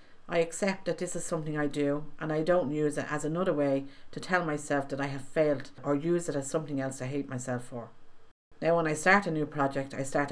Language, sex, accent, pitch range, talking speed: English, female, Irish, 135-165 Hz, 245 wpm